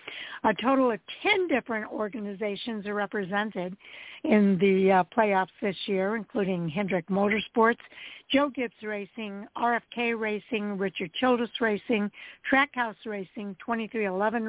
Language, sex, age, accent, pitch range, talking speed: English, female, 60-79, American, 205-240 Hz, 115 wpm